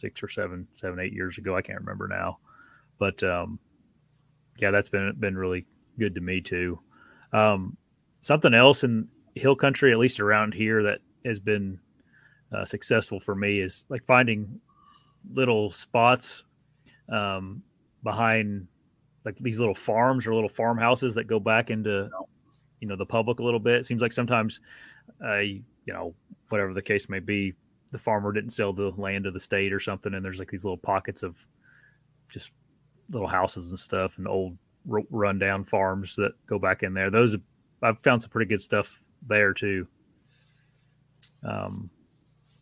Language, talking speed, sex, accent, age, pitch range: English, 170 wpm, male, American, 30-49, 100-125 Hz